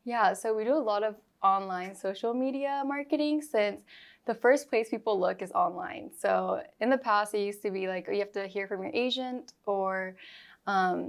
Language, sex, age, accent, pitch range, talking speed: English, female, 10-29, American, 195-225 Hz, 200 wpm